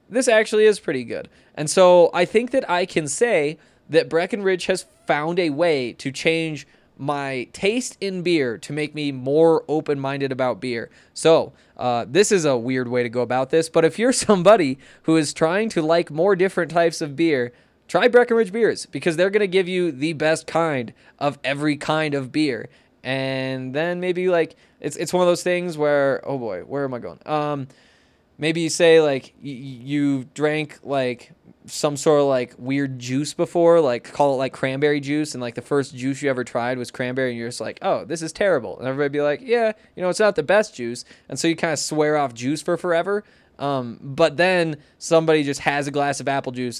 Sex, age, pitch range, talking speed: male, 20-39, 135-170 Hz, 210 wpm